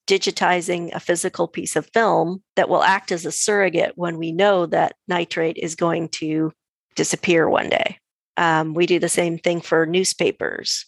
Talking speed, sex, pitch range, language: 170 wpm, female, 160-185 Hz, English